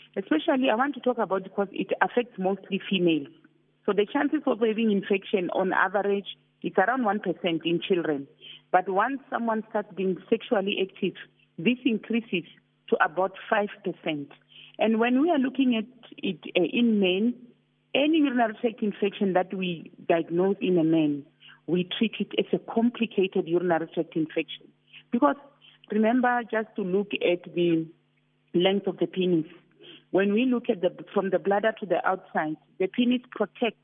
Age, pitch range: 40-59, 175-220 Hz